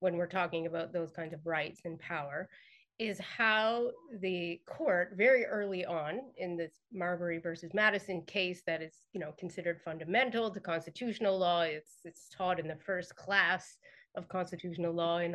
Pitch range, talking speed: 170-220 Hz, 170 wpm